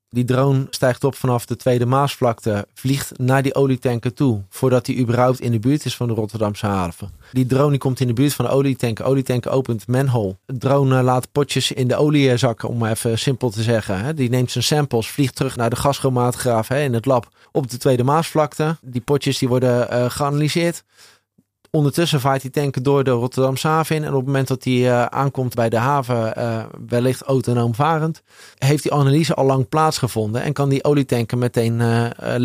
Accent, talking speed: Dutch, 200 wpm